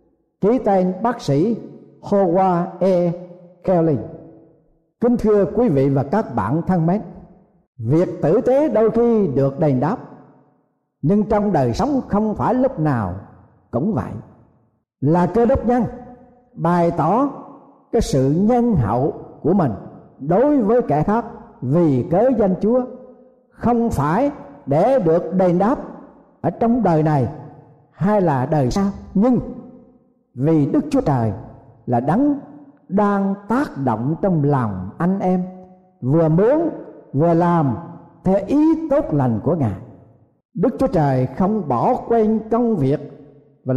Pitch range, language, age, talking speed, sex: 145-220 Hz, Vietnamese, 60-79, 140 wpm, male